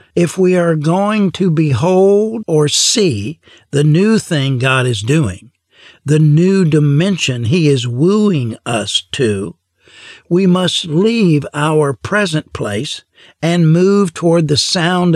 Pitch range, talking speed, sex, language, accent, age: 140-175 Hz, 130 wpm, male, English, American, 60-79